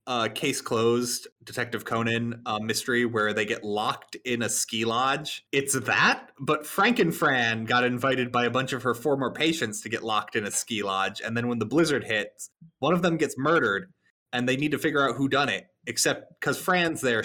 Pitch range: 120-180 Hz